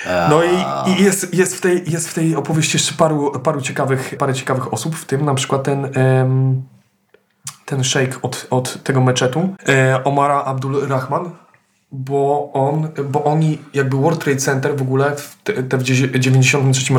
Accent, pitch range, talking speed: native, 130-150 Hz, 130 wpm